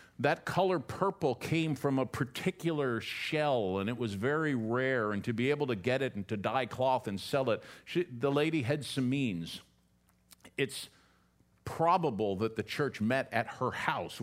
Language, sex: English, male